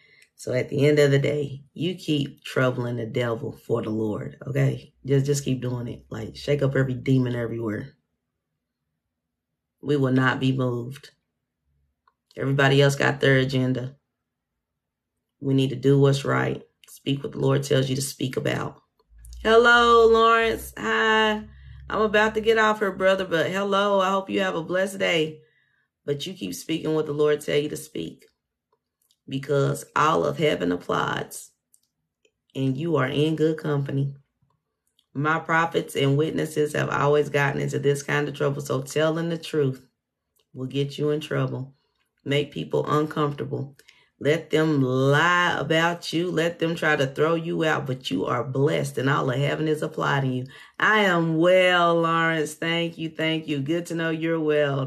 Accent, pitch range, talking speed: American, 135-165 Hz, 165 wpm